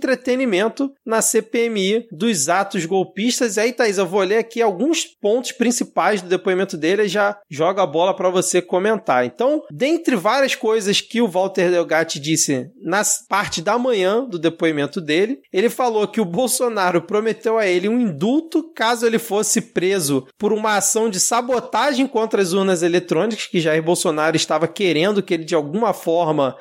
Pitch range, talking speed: 175-240 Hz, 175 wpm